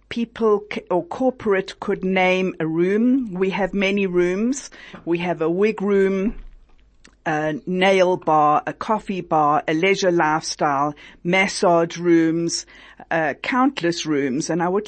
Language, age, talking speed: English, 50-69, 135 wpm